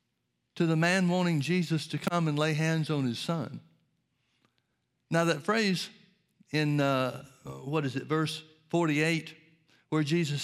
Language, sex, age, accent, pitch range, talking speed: English, male, 60-79, American, 130-170 Hz, 145 wpm